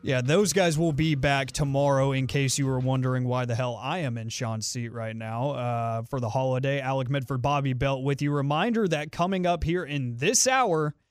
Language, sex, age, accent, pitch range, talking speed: English, male, 30-49, American, 135-170 Hz, 215 wpm